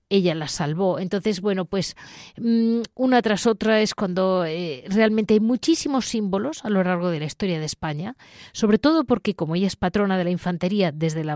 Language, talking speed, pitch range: Spanish, 190 wpm, 170-220 Hz